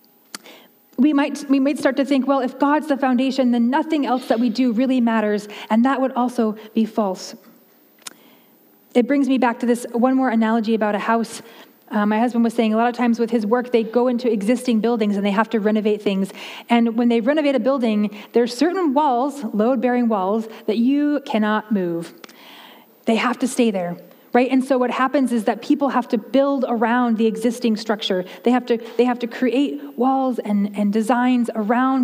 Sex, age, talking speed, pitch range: female, 30-49, 205 wpm, 220-265 Hz